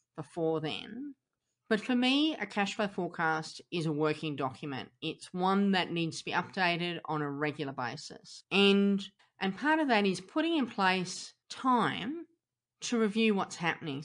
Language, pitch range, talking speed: English, 160-215 Hz, 160 wpm